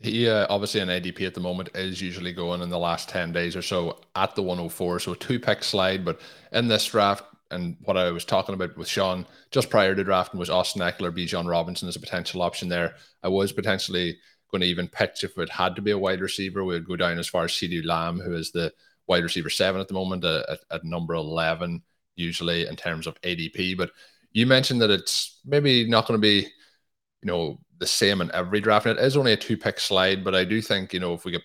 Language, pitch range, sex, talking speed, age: English, 85-100 Hz, male, 245 wpm, 20-39